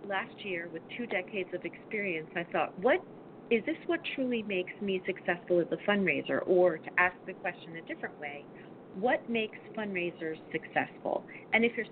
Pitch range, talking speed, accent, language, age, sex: 165-200 Hz, 175 wpm, American, English, 40-59, female